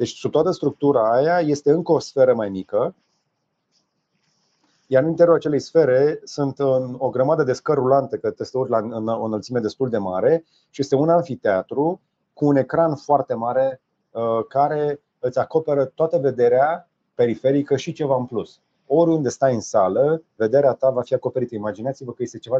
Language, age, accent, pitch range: Romanian, 30-49, native, 115-145 Hz